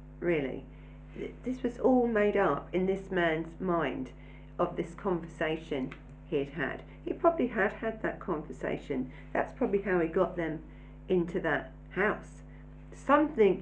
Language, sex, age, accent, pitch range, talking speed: English, female, 50-69, British, 155-185 Hz, 140 wpm